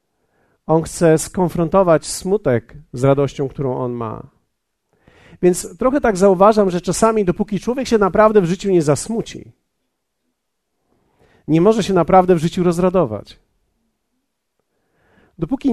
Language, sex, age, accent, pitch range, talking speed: Polish, male, 50-69, native, 160-210 Hz, 120 wpm